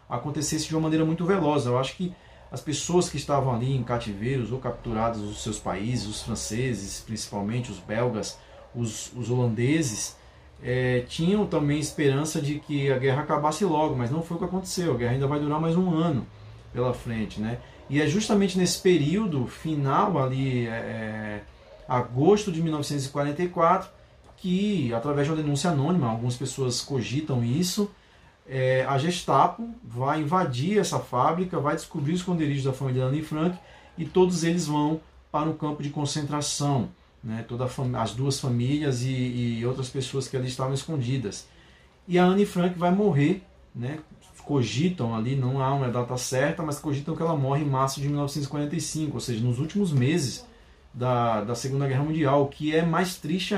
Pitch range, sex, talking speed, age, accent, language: 125-160 Hz, male, 170 wpm, 20-39, Brazilian, Portuguese